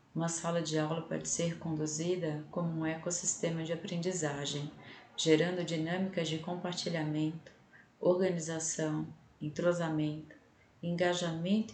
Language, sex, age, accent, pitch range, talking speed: Portuguese, female, 30-49, Brazilian, 155-175 Hz, 95 wpm